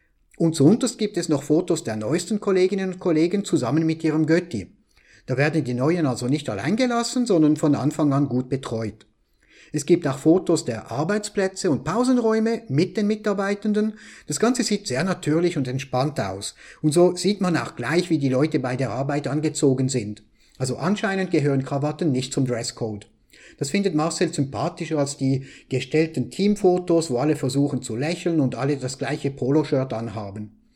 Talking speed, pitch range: 170 wpm, 130-185 Hz